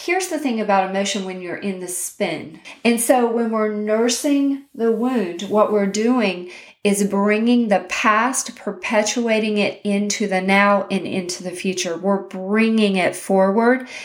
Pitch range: 190-230 Hz